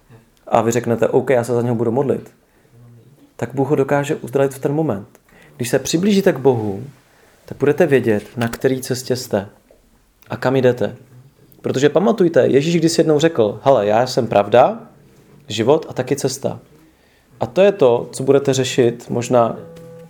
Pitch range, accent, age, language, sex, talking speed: 120-145 Hz, Czech, 30-49, English, male, 165 wpm